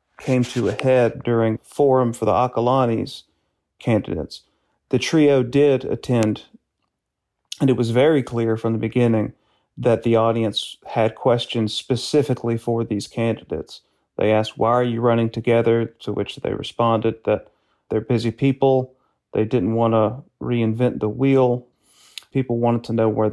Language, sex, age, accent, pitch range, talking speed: English, male, 40-59, American, 115-125 Hz, 150 wpm